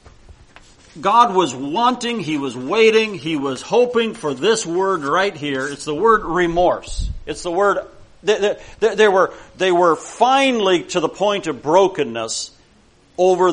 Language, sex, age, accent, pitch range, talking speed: English, male, 40-59, American, 140-195 Hz, 140 wpm